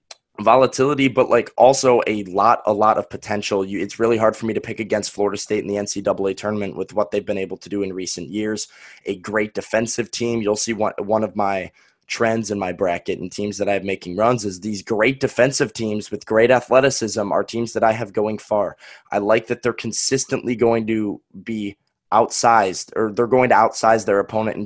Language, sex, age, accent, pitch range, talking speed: English, male, 20-39, American, 100-115 Hz, 215 wpm